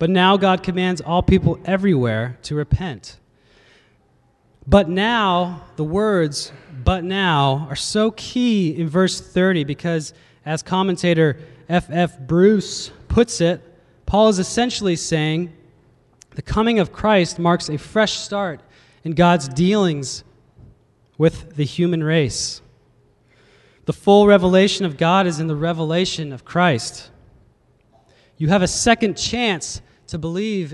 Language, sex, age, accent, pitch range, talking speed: English, male, 20-39, American, 135-185 Hz, 125 wpm